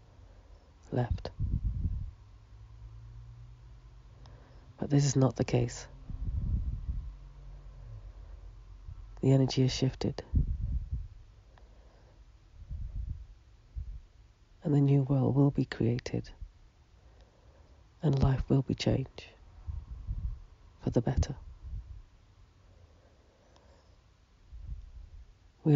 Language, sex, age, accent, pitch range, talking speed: English, female, 40-59, British, 85-125 Hz, 65 wpm